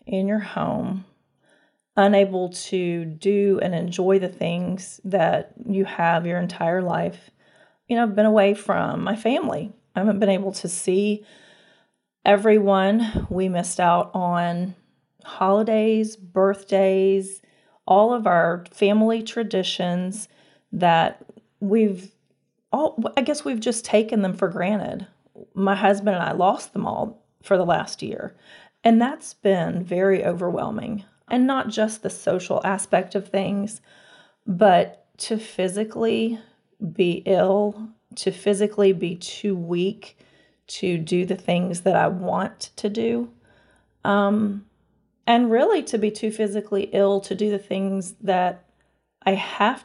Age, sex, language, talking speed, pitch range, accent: 30-49, female, English, 135 wpm, 185-215 Hz, American